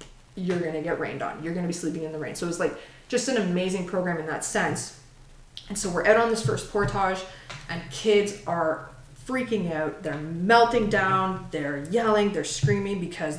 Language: English